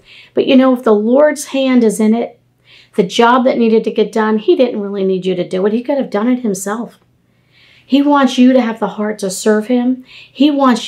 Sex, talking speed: female, 235 wpm